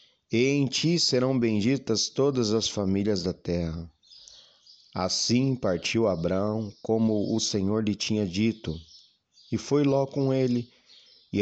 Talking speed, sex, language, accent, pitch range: 130 wpm, male, Portuguese, Brazilian, 95-125 Hz